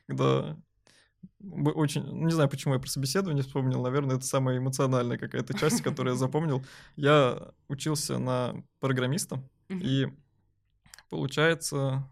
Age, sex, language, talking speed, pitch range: 20-39, male, Russian, 120 wpm, 130-150 Hz